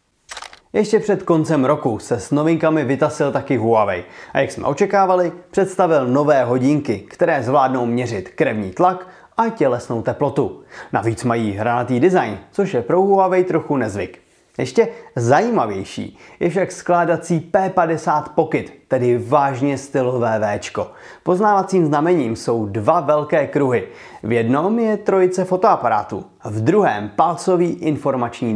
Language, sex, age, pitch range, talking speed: Czech, male, 30-49, 125-175 Hz, 130 wpm